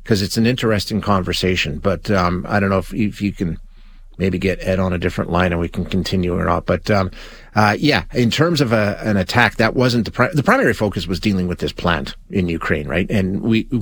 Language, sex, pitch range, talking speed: English, male, 95-120 Hz, 235 wpm